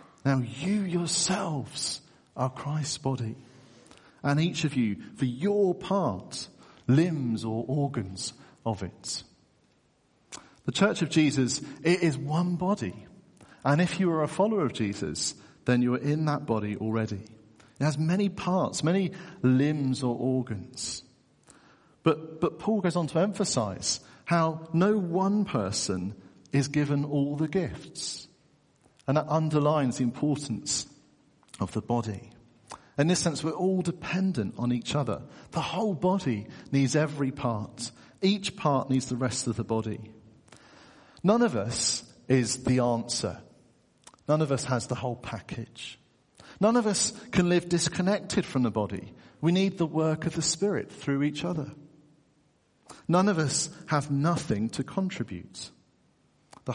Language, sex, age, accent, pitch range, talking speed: English, male, 50-69, British, 125-175 Hz, 145 wpm